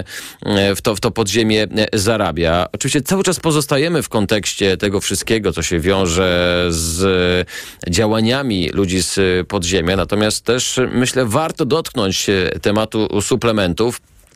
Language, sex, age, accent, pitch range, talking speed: Polish, male, 40-59, native, 85-115 Hz, 115 wpm